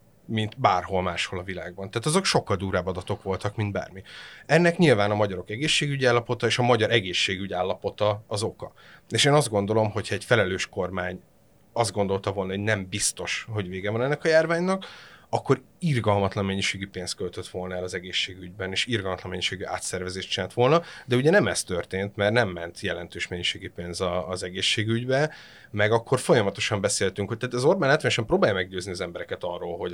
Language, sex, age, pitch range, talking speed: Hungarian, male, 30-49, 95-120 Hz, 175 wpm